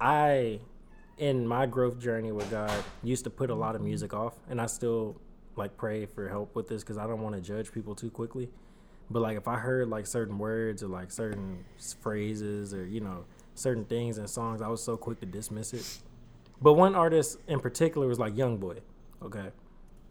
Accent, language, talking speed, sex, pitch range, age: American, English, 205 wpm, male, 105-125 Hz, 20-39